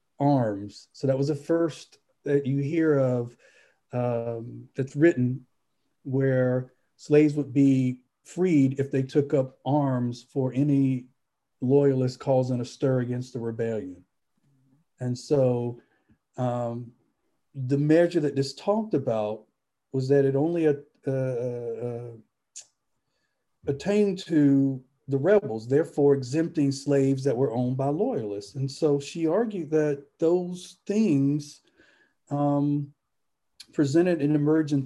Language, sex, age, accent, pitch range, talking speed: English, male, 40-59, American, 130-150 Hz, 120 wpm